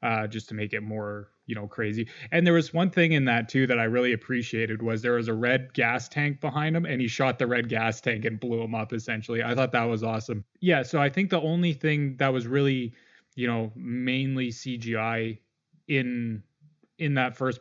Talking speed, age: 220 wpm, 20-39